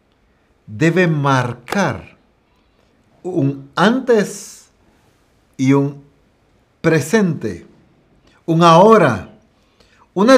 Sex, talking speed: male, 60 wpm